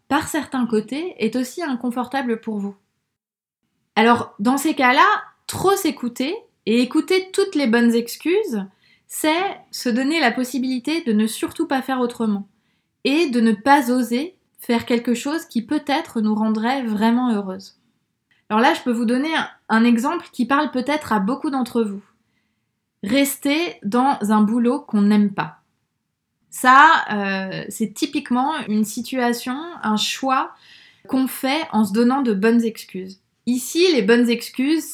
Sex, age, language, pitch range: female, 20-39, French, 210-265 Hz